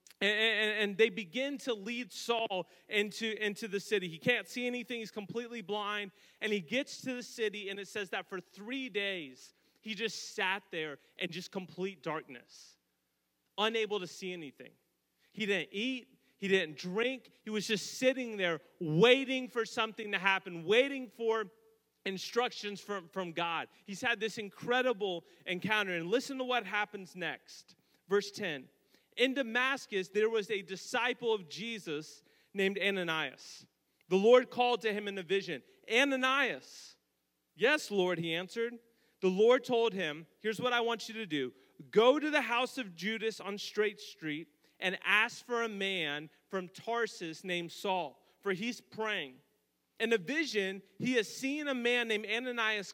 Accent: American